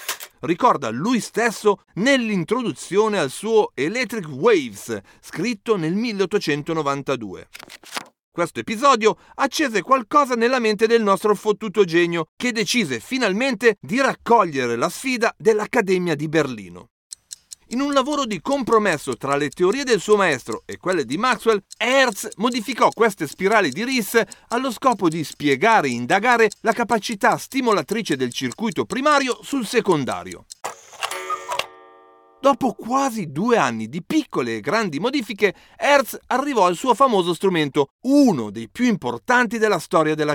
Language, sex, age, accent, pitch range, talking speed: Italian, male, 40-59, native, 170-245 Hz, 130 wpm